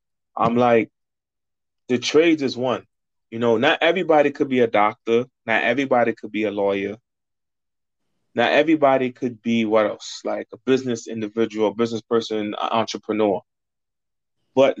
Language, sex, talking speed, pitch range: English, male, 145 wpm, 110-130 Hz